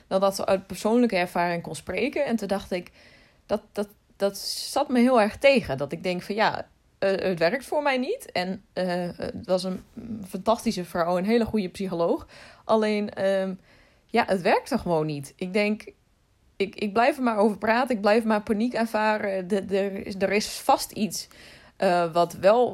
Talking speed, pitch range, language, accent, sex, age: 175 wpm, 180-220 Hz, Dutch, Dutch, female, 20-39